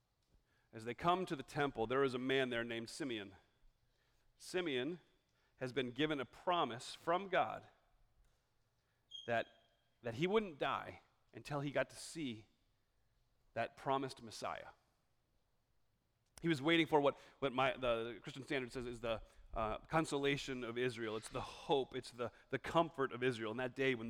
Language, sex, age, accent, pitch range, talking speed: English, male, 40-59, American, 120-165 Hz, 160 wpm